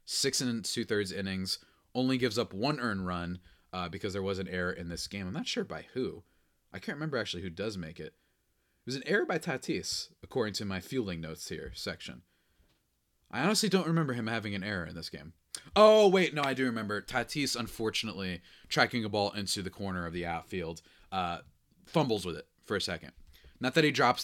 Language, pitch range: English, 90-115 Hz